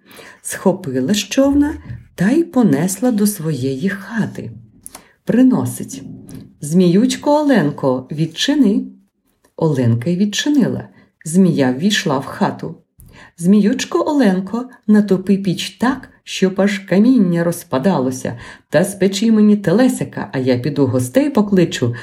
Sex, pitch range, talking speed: female, 140-230 Hz, 100 wpm